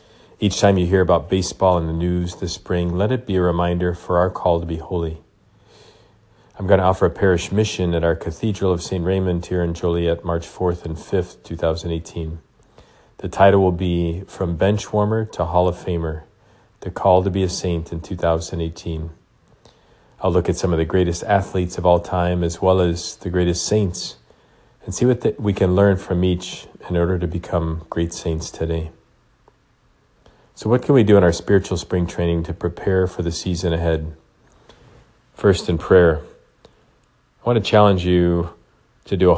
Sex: male